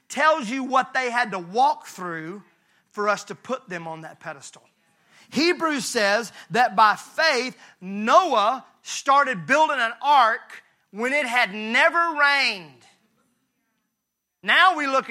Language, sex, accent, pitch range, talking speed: English, male, American, 205-270 Hz, 135 wpm